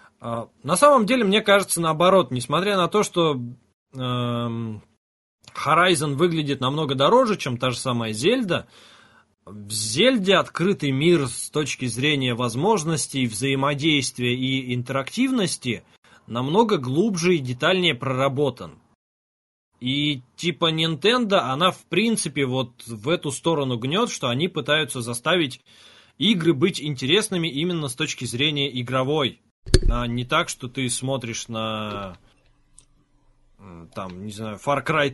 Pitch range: 125-165 Hz